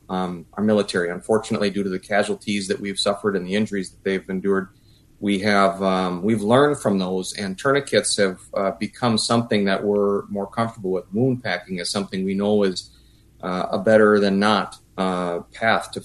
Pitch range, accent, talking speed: 95-110 Hz, American, 185 wpm